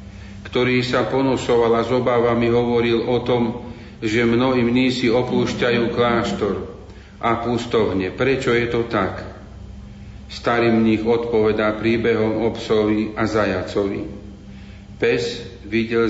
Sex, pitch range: male, 100-120 Hz